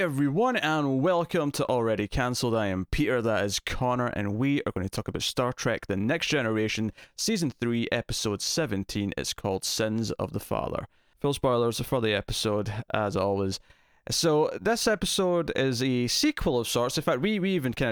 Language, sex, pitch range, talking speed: English, male, 110-130 Hz, 185 wpm